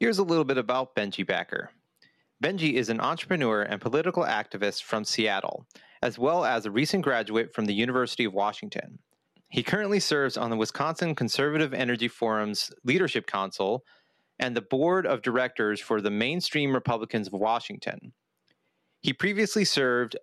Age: 30-49